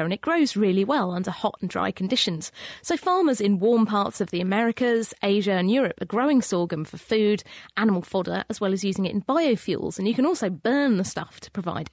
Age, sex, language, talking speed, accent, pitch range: 30-49, female, English, 220 wpm, British, 190-260 Hz